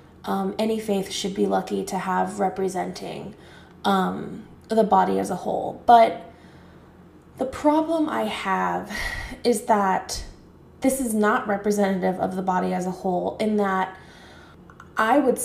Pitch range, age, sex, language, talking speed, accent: 195-235 Hz, 20-39, female, English, 140 wpm, American